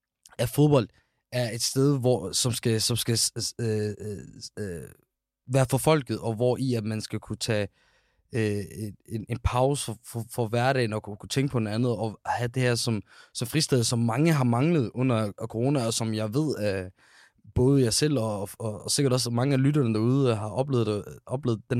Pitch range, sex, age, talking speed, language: 110-140 Hz, male, 20-39, 205 wpm, Danish